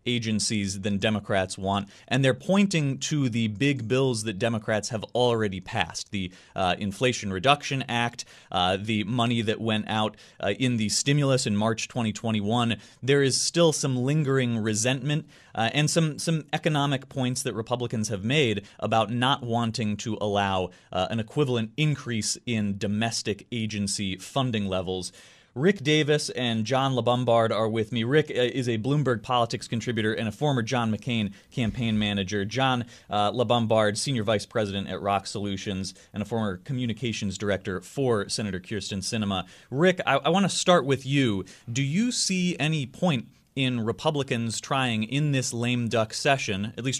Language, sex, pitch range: English, male, 110-135 Hz